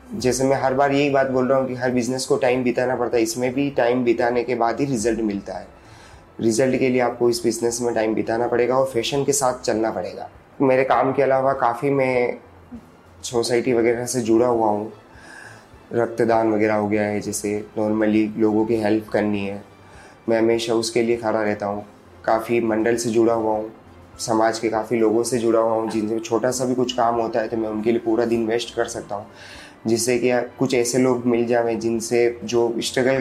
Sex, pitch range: male, 110-125 Hz